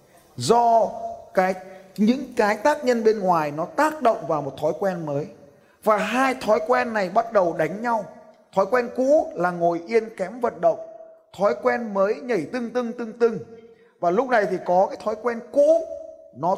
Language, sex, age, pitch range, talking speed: Vietnamese, male, 20-39, 180-250 Hz, 185 wpm